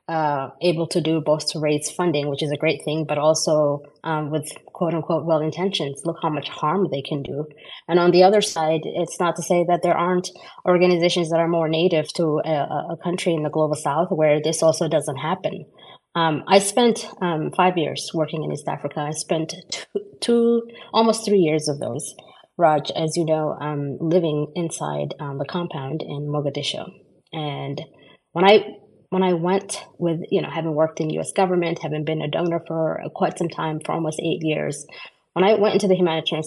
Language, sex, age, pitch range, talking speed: English, female, 20-39, 150-180 Hz, 195 wpm